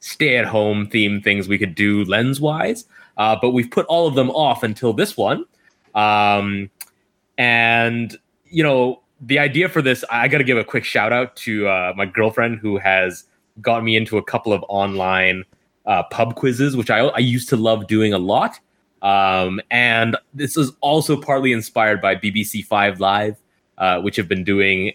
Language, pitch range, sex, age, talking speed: English, 105-135 Hz, male, 20-39, 190 wpm